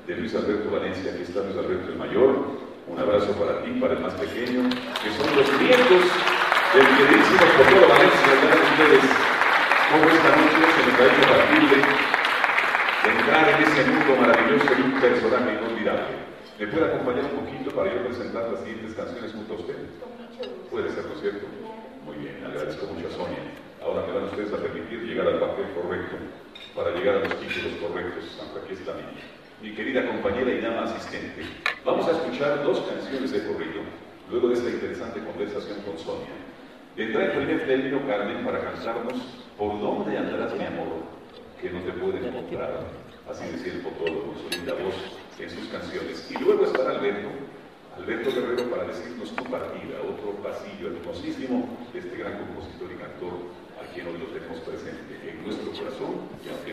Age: 40-59